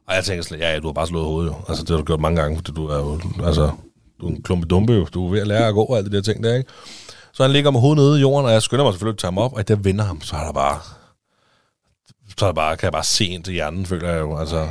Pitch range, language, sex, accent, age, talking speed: 90-120 Hz, Danish, male, native, 30-49, 345 wpm